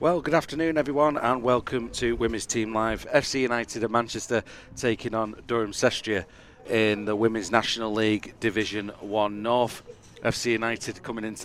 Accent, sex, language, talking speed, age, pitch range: British, male, English, 150 wpm, 40-59, 105-120 Hz